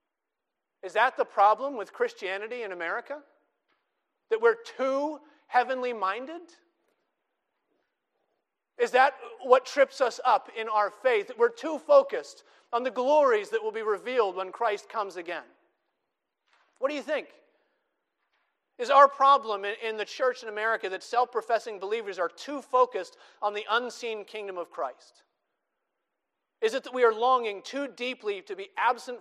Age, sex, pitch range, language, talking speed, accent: 40-59, male, 200-290 Hz, English, 150 wpm, American